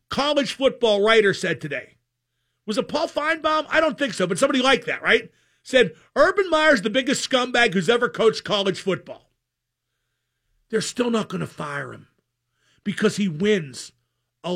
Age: 50-69